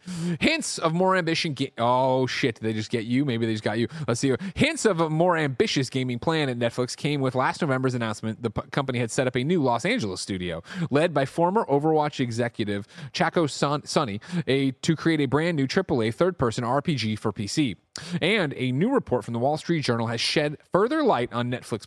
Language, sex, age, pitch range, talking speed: English, male, 30-49, 120-170 Hz, 215 wpm